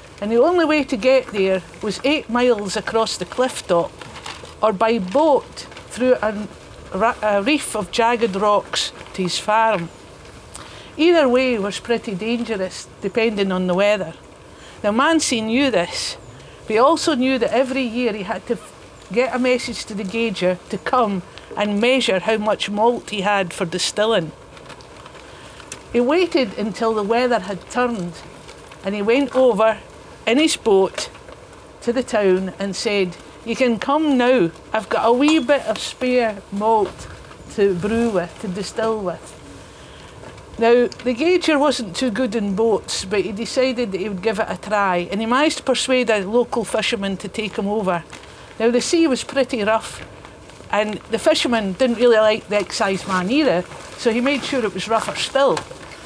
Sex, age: female, 60-79